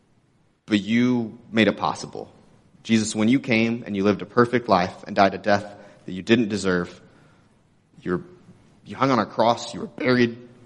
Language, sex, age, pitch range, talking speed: English, male, 30-49, 100-115 Hz, 175 wpm